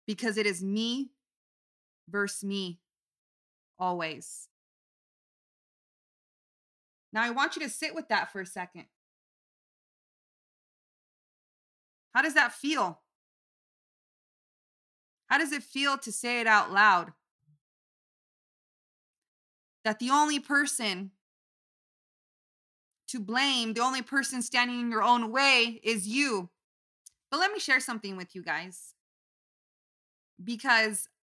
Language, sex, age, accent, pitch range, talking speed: English, female, 30-49, American, 170-240 Hz, 105 wpm